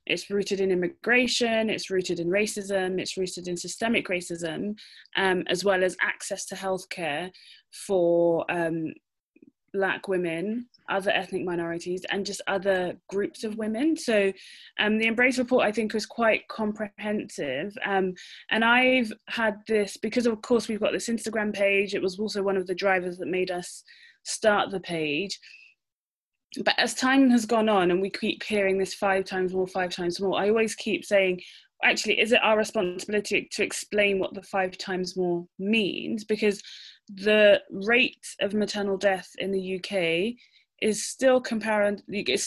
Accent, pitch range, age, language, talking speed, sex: British, 185-220 Hz, 20-39, English, 165 wpm, female